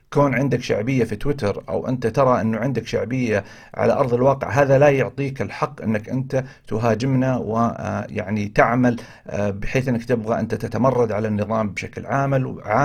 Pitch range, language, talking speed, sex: 110-140 Hz, Arabic, 150 wpm, male